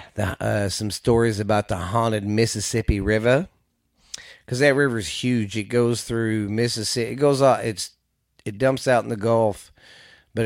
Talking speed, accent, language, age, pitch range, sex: 155 wpm, American, English, 40-59, 95-120 Hz, male